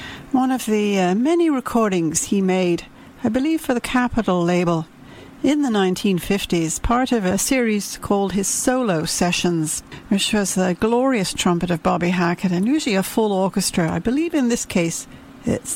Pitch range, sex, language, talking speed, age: 180-235 Hz, female, English, 170 wpm, 60-79